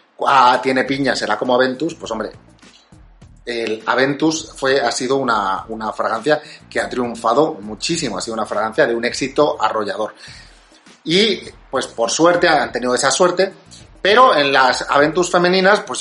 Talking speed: 155 wpm